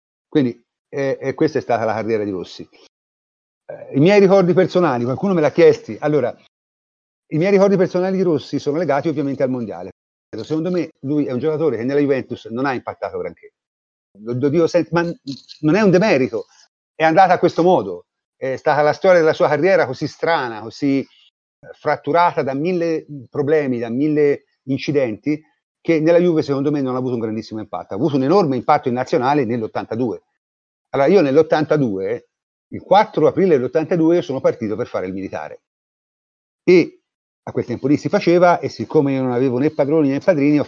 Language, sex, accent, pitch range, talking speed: Italian, male, native, 125-175 Hz, 175 wpm